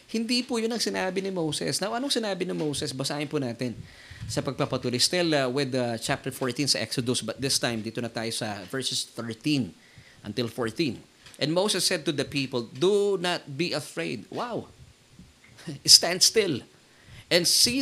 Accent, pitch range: native, 135-210 Hz